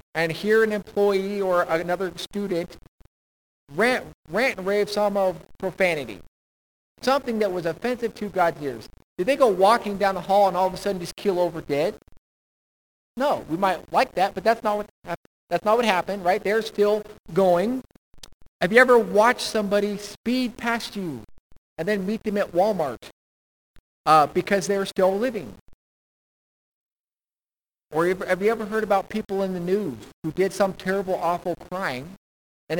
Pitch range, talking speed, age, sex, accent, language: 160-205 Hz, 160 wpm, 50-69, male, American, English